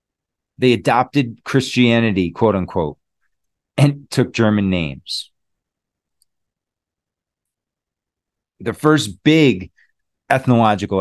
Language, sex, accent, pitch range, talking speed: English, male, American, 100-135 Hz, 70 wpm